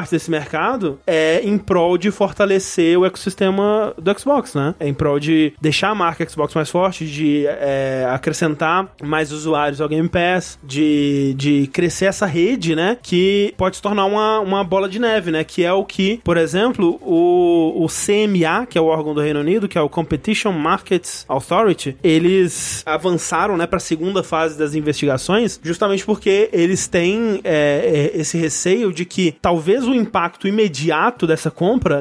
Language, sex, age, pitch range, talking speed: Portuguese, male, 20-39, 155-190 Hz, 170 wpm